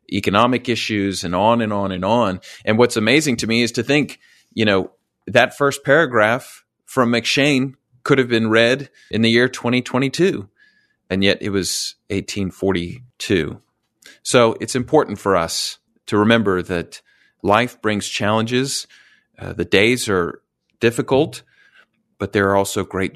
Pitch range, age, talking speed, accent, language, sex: 95-115 Hz, 30-49, 150 wpm, American, English, male